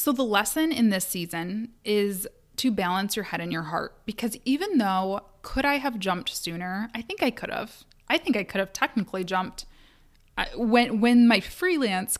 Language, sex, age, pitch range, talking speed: English, female, 20-39, 190-235 Hz, 190 wpm